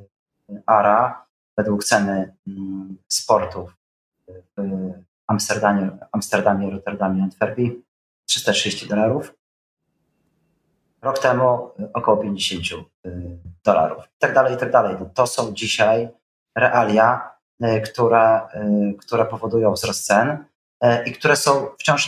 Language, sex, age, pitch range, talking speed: Polish, male, 30-49, 100-120 Hz, 100 wpm